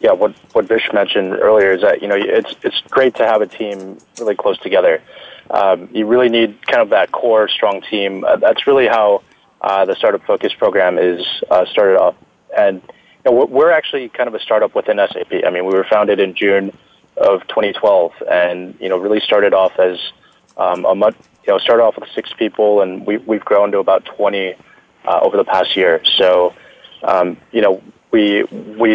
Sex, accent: male, American